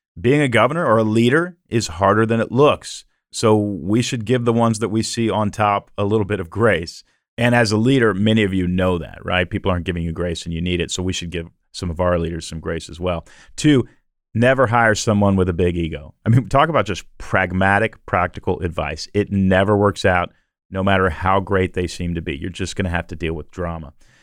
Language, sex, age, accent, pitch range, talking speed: English, male, 40-59, American, 90-120 Hz, 235 wpm